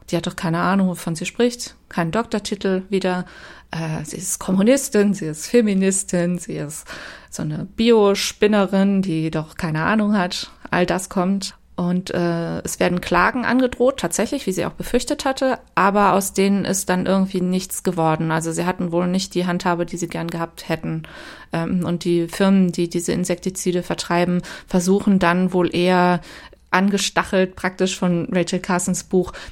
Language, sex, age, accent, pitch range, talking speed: German, female, 20-39, German, 170-195 Hz, 165 wpm